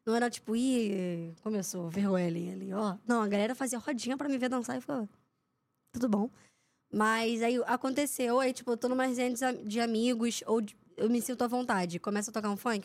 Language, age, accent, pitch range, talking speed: Portuguese, 10-29, Brazilian, 210-270 Hz, 220 wpm